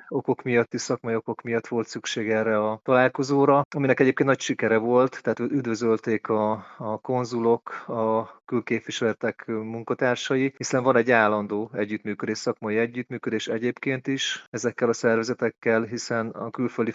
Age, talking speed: 30-49, 140 wpm